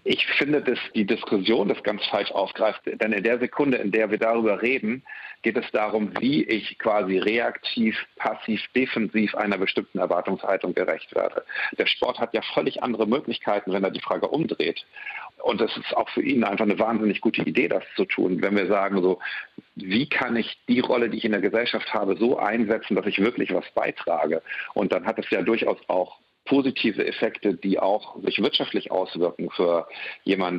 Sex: male